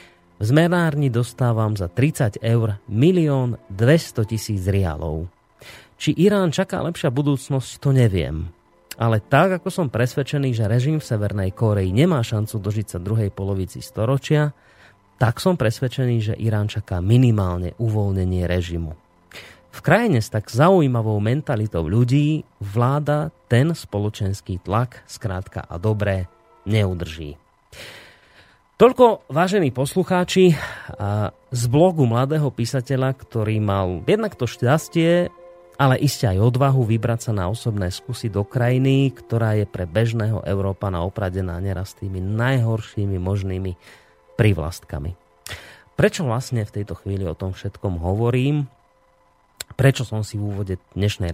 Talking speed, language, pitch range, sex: 125 wpm, Slovak, 100-135 Hz, male